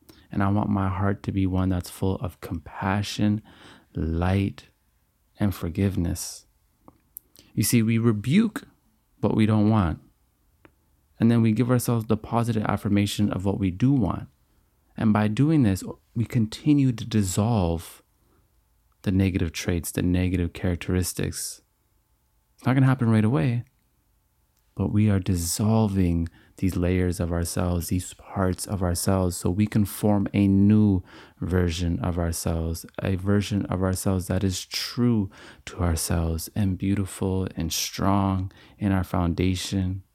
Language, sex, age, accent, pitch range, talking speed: English, male, 30-49, American, 90-105 Hz, 140 wpm